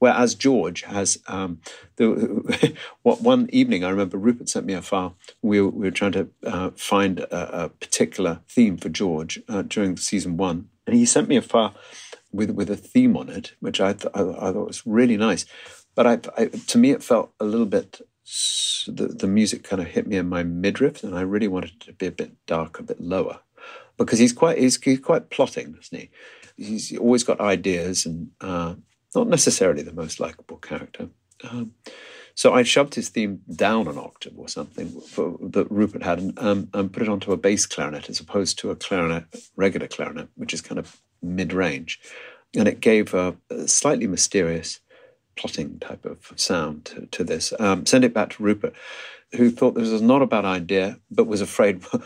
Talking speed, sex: 200 wpm, male